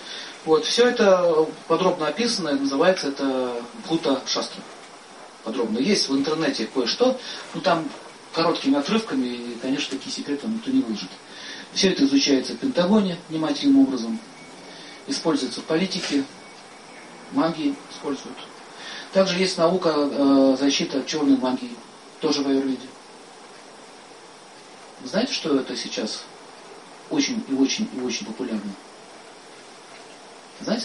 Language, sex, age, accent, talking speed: Russian, male, 40-59, native, 115 wpm